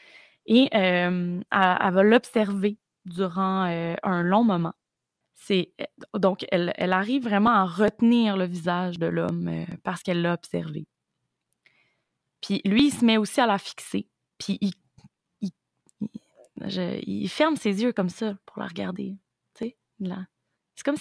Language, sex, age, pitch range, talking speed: French, female, 20-39, 175-215 Hz, 145 wpm